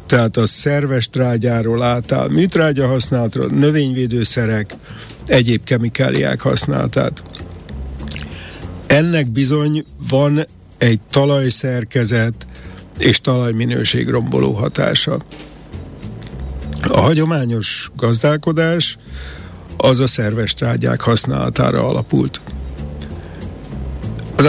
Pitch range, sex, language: 100-135 Hz, male, Hungarian